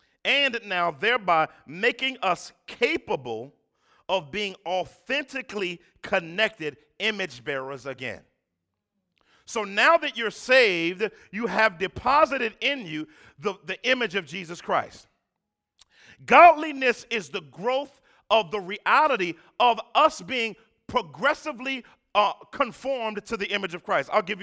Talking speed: 120 wpm